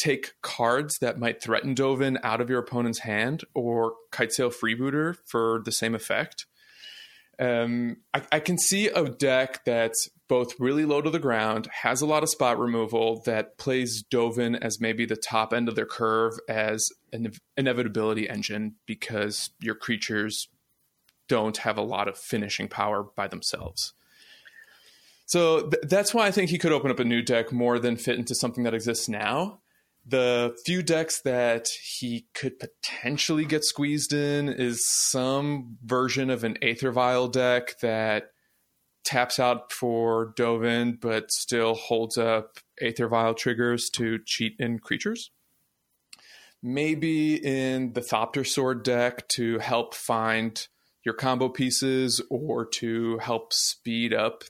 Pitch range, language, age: 115-135 Hz, English, 20-39